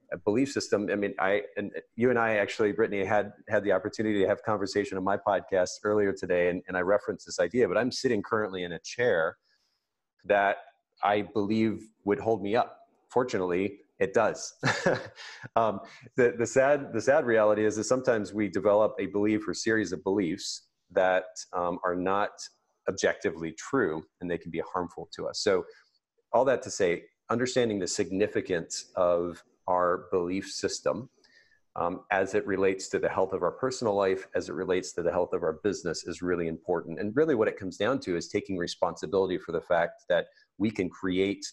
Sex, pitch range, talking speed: male, 90-110 Hz, 190 wpm